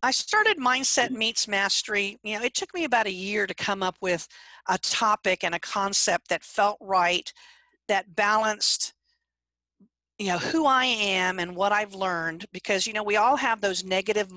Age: 50-69